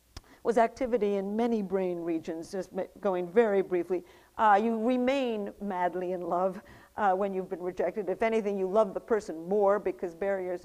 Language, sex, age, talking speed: English, female, 50-69, 170 wpm